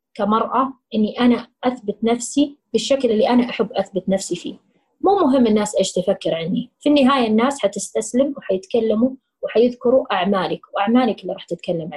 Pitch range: 200-250 Hz